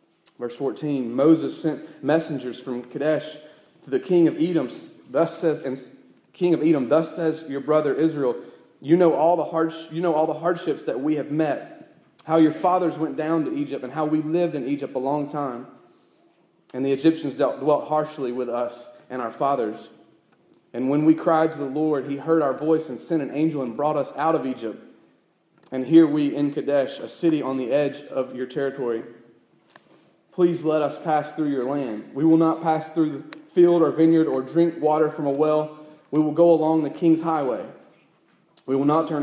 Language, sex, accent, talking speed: English, male, American, 195 wpm